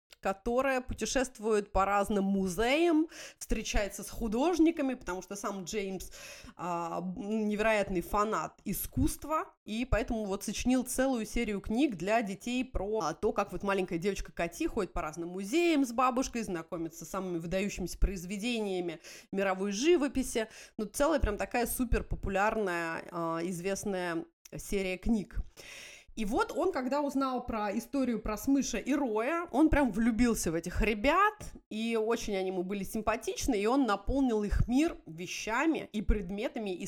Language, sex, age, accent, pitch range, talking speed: Russian, female, 30-49, native, 195-265 Hz, 145 wpm